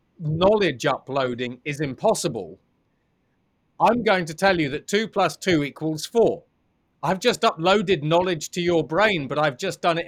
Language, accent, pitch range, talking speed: English, British, 155-190 Hz, 160 wpm